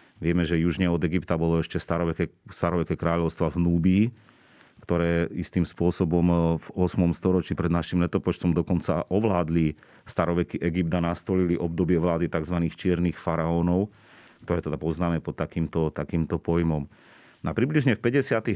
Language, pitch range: Slovak, 85-95 Hz